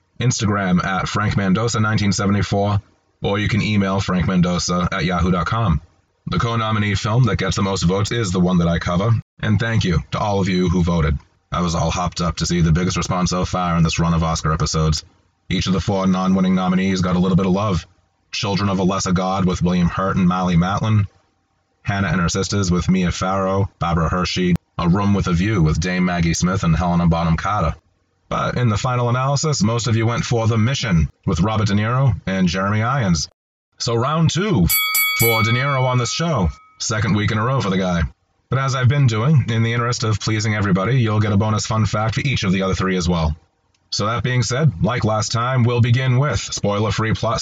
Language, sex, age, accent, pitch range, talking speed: English, male, 30-49, American, 90-115 Hz, 215 wpm